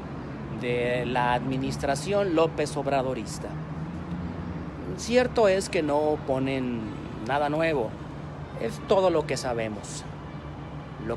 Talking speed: 95 wpm